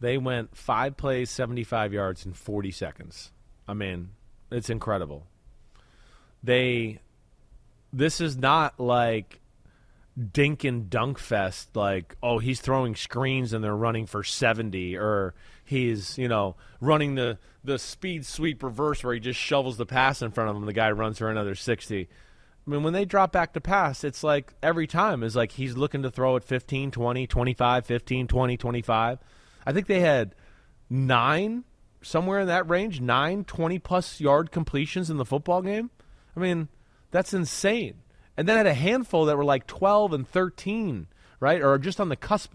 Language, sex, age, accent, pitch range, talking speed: English, male, 30-49, American, 115-165 Hz, 170 wpm